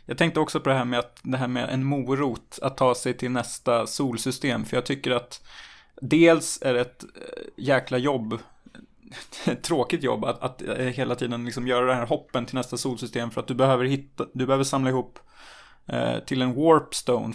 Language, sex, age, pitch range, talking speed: Swedish, male, 20-39, 120-135 Hz, 195 wpm